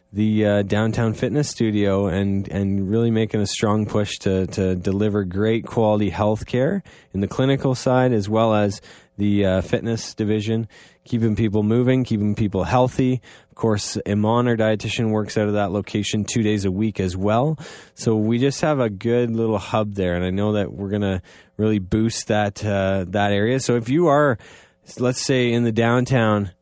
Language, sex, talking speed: English, male, 185 wpm